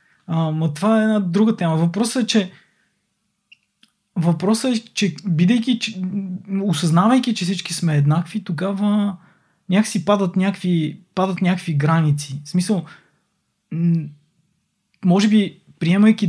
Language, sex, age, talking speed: Bulgarian, male, 20-39, 110 wpm